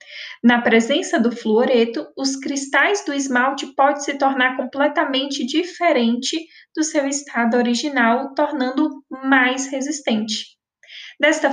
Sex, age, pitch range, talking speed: female, 10-29, 230-290 Hz, 110 wpm